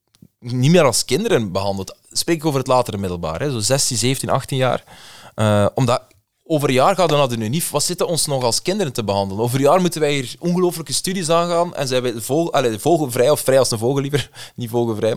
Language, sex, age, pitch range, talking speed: Dutch, male, 20-39, 110-145 Hz, 225 wpm